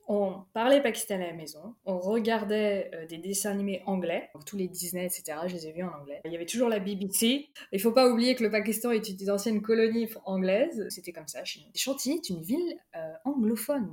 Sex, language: female, French